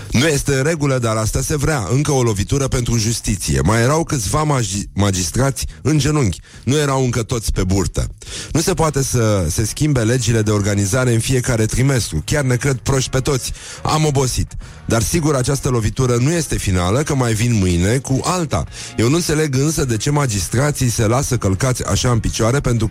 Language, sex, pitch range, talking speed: Romanian, male, 100-130 Hz, 190 wpm